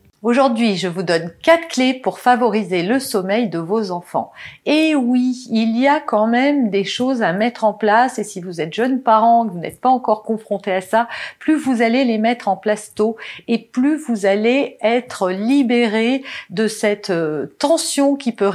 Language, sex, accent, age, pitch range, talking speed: French, female, French, 40-59, 200-255 Hz, 190 wpm